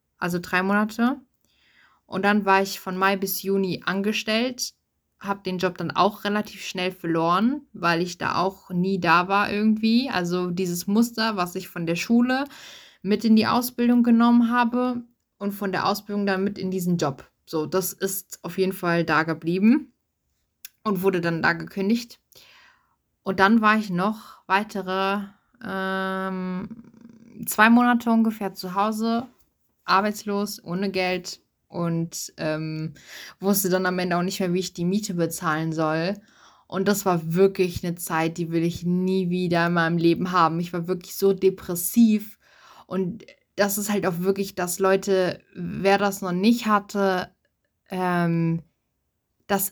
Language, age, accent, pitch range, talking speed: German, 20-39, German, 180-210 Hz, 155 wpm